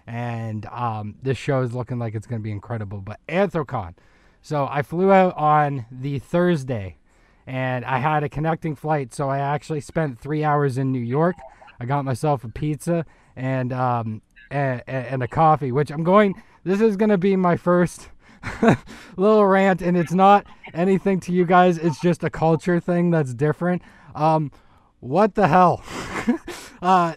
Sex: male